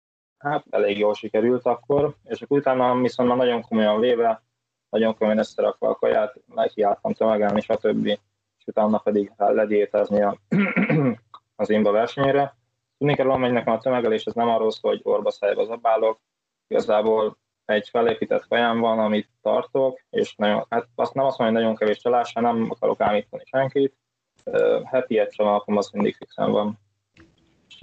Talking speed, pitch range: 160 wpm, 105-130 Hz